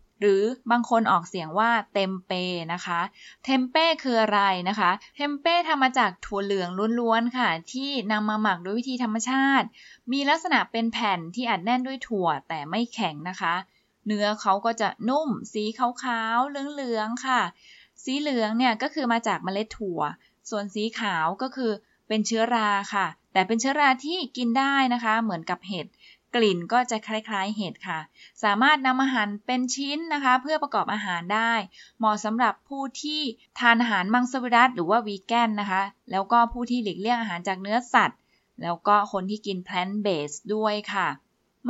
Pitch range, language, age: 200-250 Hz, Thai, 20-39